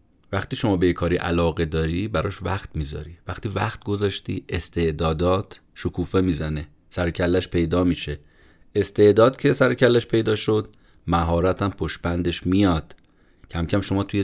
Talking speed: 135 wpm